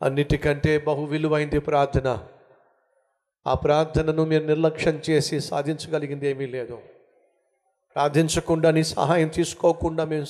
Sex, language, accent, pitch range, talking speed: male, Telugu, native, 145-185 Hz, 100 wpm